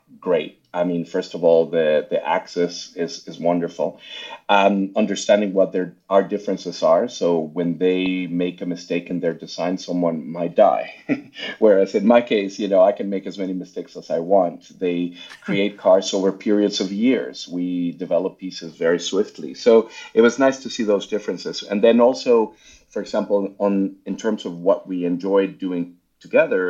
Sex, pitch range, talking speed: male, 85-105 Hz, 180 wpm